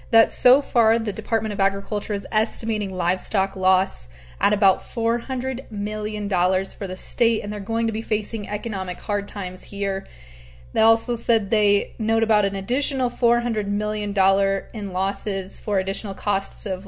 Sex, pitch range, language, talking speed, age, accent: female, 190-225 Hz, English, 155 wpm, 20-39, American